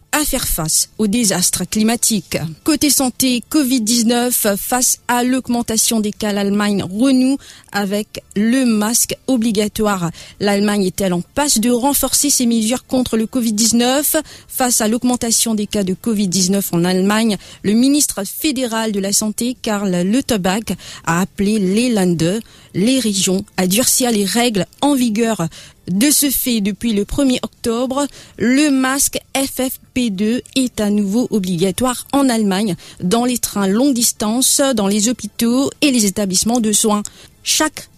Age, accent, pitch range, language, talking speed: 40-59, French, 200-255 Hz, English, 145 wpm